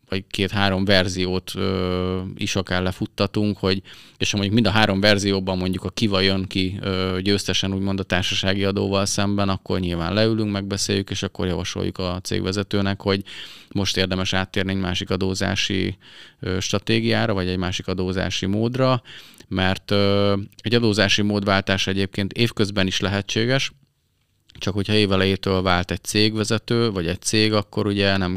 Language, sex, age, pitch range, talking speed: Hungarian, male, 20-39, 90-105 Hz, 150 wpm